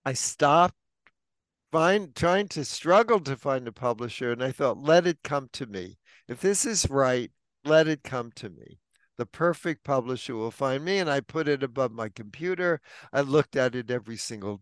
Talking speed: 190 wpm